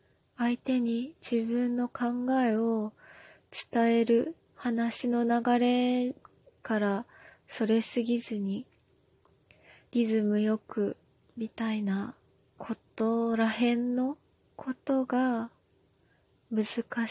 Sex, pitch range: female, 215-245 Hz